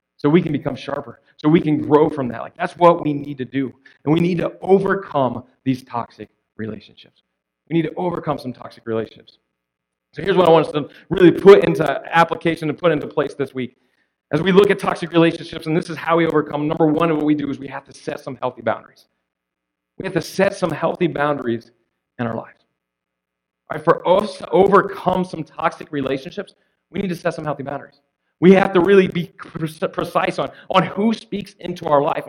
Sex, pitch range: male, 135-185 Hz